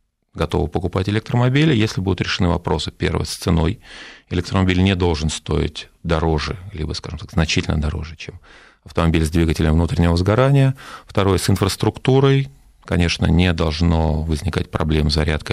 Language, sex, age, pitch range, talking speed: Russian, male, 40-59, 80-105 Hz, 135 wpm